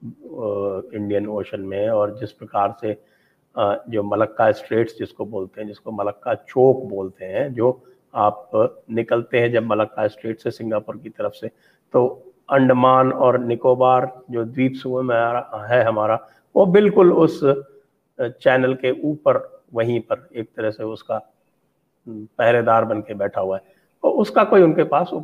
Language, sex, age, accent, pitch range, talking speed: English, male, 50-69, Indian, 110-145 Hz, 135 wpm